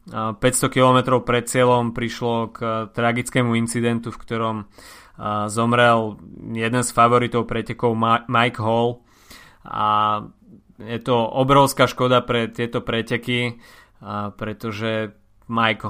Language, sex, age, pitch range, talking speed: Slovak, male, 20-39, 110-125 Hz, 100 wpm